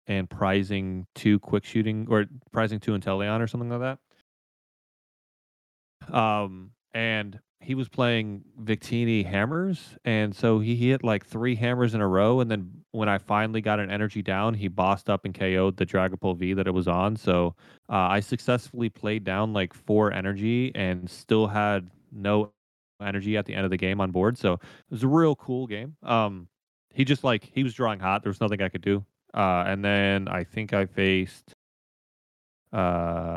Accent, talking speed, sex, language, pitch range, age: American, 185 wpm, male, English, 90-110 Hz, 30-49